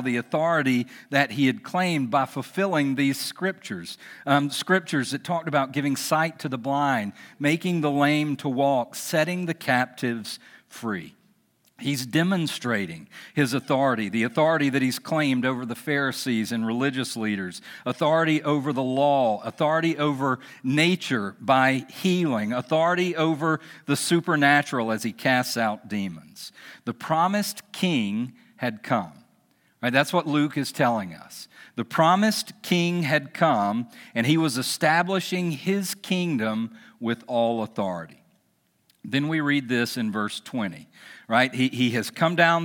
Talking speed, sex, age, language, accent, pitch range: 140 wpm, male, 50-69, English, American, 125-160 Hz